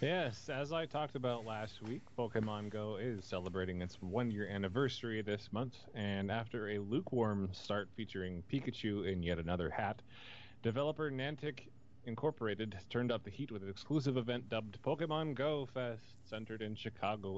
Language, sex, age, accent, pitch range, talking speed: English, male, 30-49, American, 100-125 Hz, 155 wpm